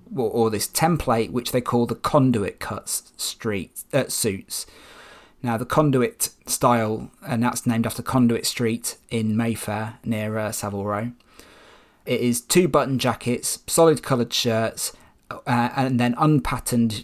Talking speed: 135 wpm